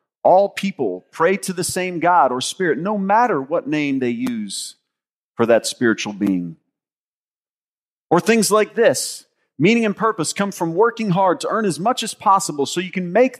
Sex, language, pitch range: male, English, 125-205 Hz